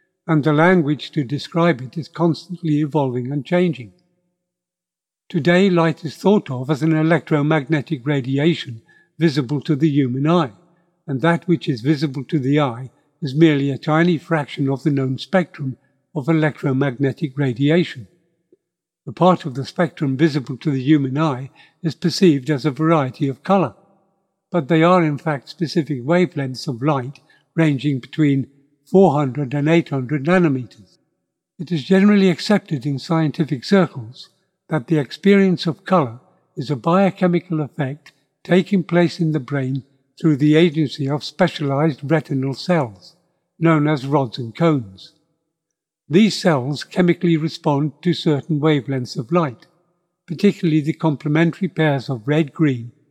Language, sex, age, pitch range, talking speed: English, male, 60-79, 140-175 Hz, 140 wpm